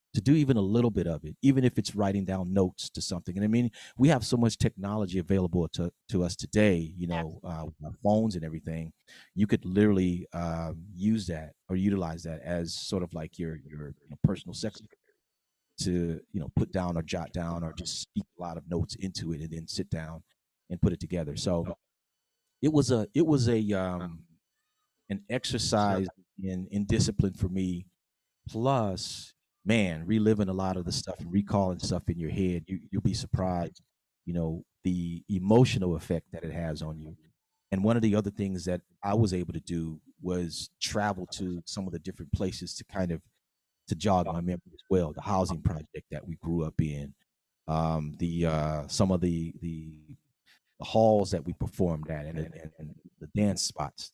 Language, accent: English, American